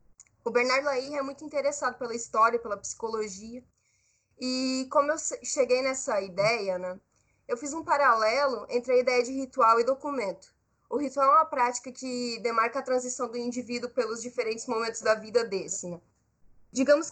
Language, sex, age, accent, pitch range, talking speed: Portuguese, female, 10-29, Brazilian, 220-270 Hz, 165 wpm